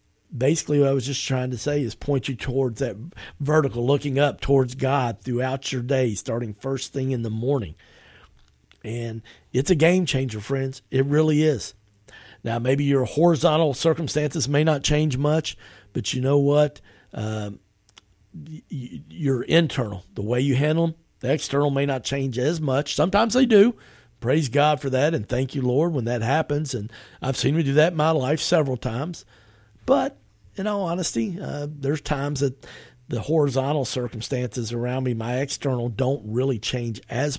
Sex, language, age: male, English, 50-69